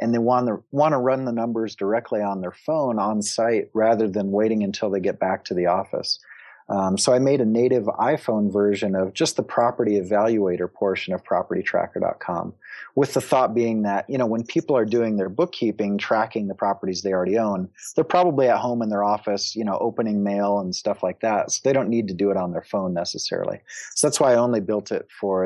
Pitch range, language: 100-125 Hz, English